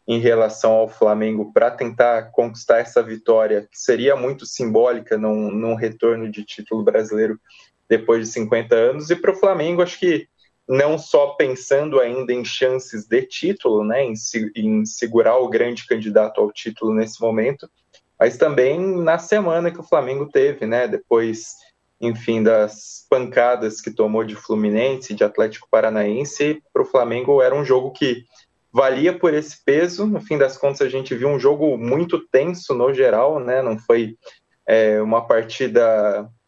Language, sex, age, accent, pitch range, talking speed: Portuguese, male, 20-39, Brazilian, 110-150 Hz, 160 wpm